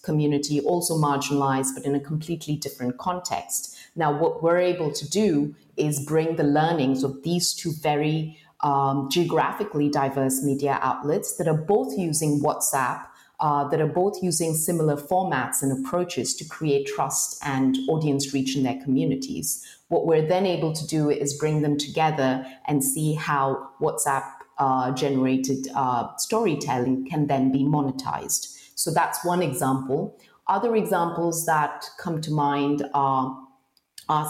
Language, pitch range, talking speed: English, 140-165 Hz, 145 wpm